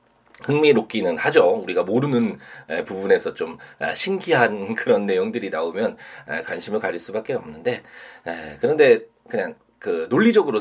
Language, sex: Korean, male